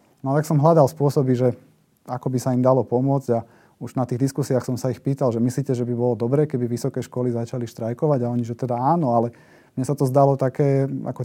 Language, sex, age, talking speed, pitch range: Slovak, male, 30-49, 240 wpm, 120-135 Hz